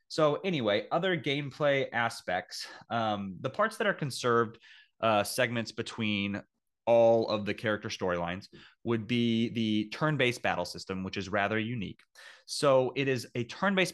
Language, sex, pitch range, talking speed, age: English, male, 100-125 Hz, 145 wpm, 30-49